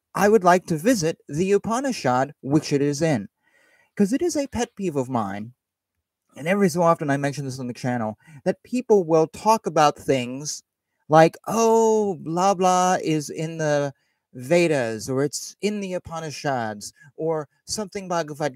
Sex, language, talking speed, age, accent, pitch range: male, English, 165 wpm, 30-49, American, 140-205 Hz